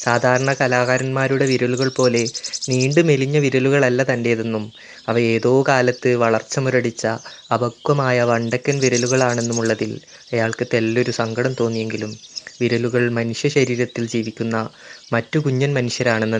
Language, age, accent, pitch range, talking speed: Malayalam, 20-39, native, 115-135 Hz, 100 wpm